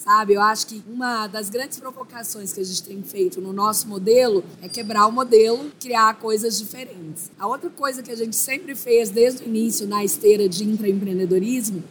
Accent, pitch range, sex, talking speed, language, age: Brazilian, 210-250 Hz, female, 190 wpm, Portuguese, 20-39